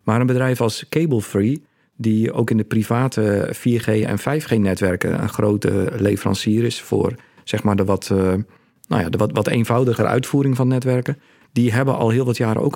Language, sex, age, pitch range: Dutch, male, 50-69, 105-125 Hz